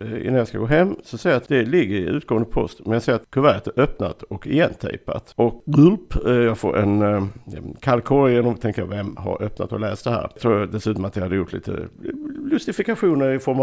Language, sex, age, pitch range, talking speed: Swedish, male, 50-69, 105-130 Hz, 225 wpm